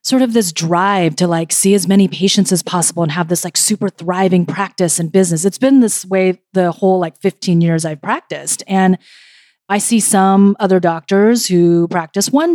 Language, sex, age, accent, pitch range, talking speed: English, female, 30-49, American, 175-215 Hz, 195 wpm